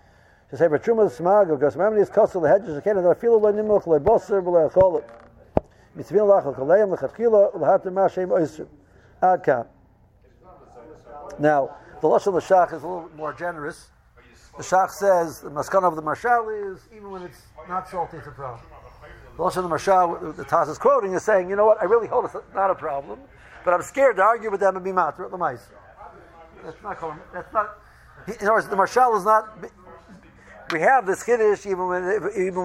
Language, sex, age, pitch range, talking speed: English, male, 60-79, 155-205 Hz, 145 wpm